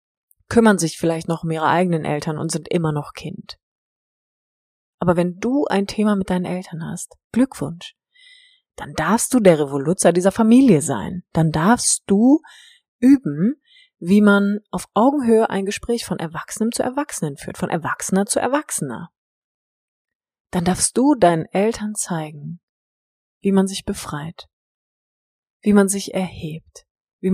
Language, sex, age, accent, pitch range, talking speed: German, female, 30-49, German, 165-215 Hz, 145 wpm